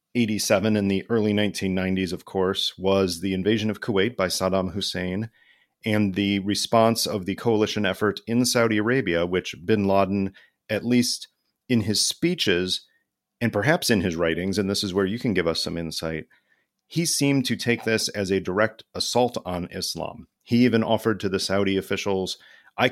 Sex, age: male, 40-59